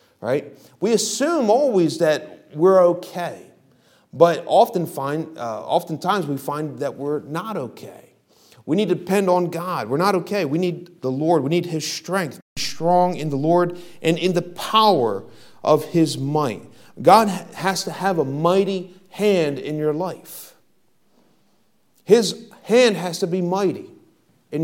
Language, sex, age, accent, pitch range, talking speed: English, male, 40-59, American, 145-180 Hz, 155 wpm